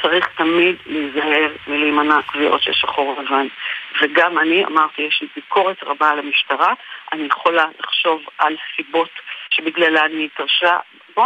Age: 40-59